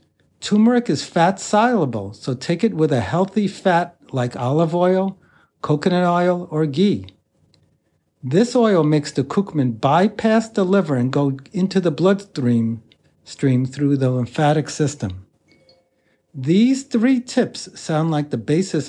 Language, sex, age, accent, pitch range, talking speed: English, male, 60-79, American, 135-195 Hz, 135 wpm